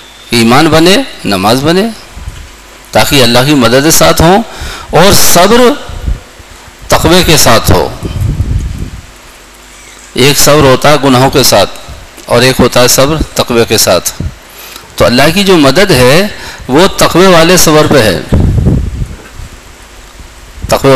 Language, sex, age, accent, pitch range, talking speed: English, male, 50-69, Indian, 105-150 Hz, 125 wpm